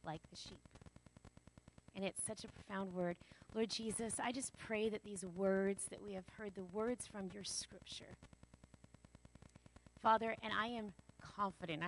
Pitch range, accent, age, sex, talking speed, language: 190-235 Hz, American, 30-49, female, 155 wpm, English